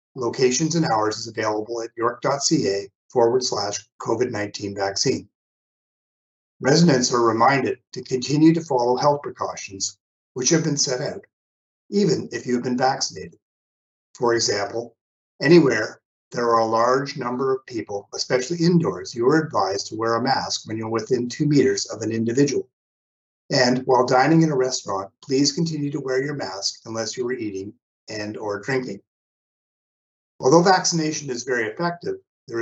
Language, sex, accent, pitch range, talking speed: English, male, American, 115-155 Hz, 155 wpm